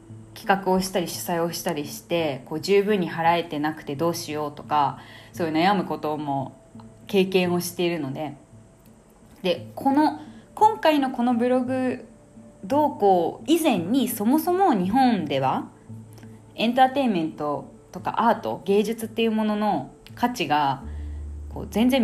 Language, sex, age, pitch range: Japanese, female, 20-39, 150-240 Hz